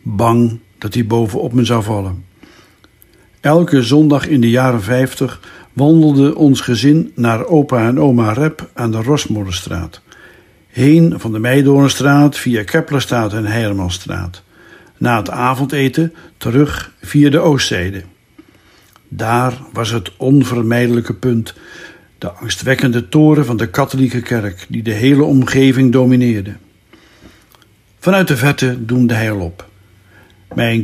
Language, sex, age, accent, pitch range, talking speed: Dutch, male, 60-79, Dutch, 115-145 Hz, 125 wpm